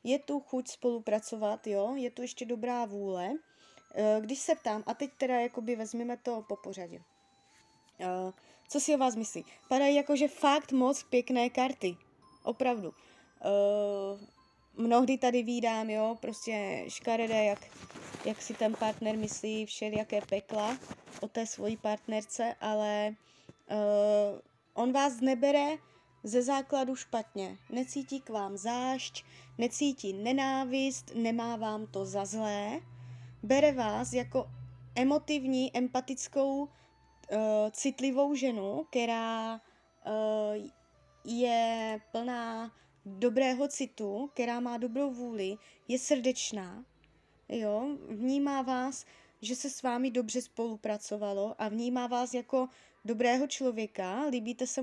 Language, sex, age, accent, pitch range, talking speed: Czech, female, 20-39, native, 210-260 Hz, 115 wpm